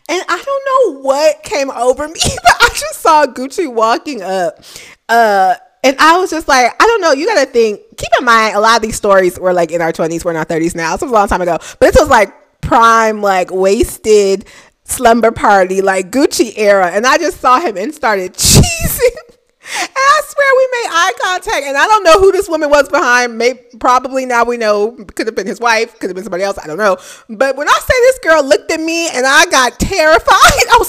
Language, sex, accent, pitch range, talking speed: English, female, American, 220-330 Hz, 235 wpm